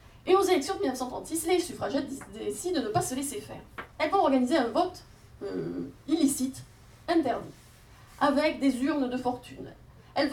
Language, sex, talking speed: French, female, 165 wpm